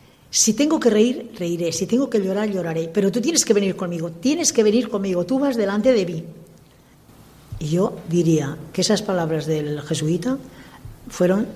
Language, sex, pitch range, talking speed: Spanish, female, 170-220 Hz, 175 wpm